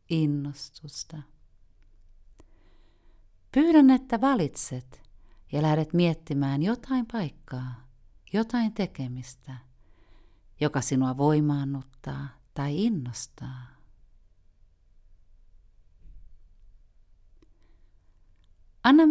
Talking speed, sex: 55 wpm, female